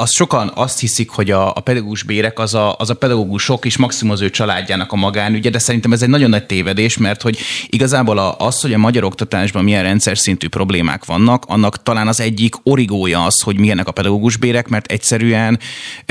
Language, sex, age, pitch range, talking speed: Hungarian, male, 30-49, 105-130 Hz, 190 wpm